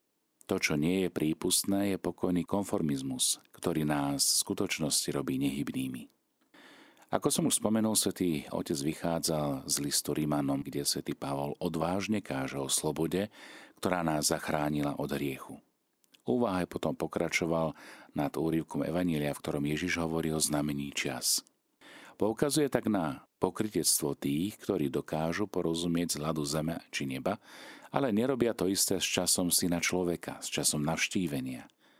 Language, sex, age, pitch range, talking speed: Slovak, male, 40-59, 75-95 Hz, 135 wpm